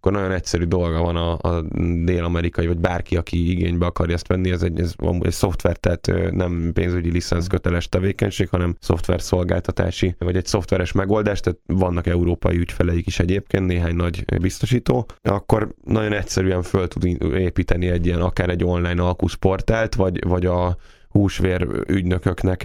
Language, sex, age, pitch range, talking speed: Hungarian, male, 10-29, 85-95 Hz, 155 wpm